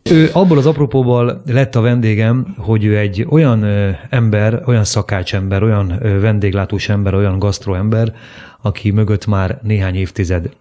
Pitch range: 95-115 Hz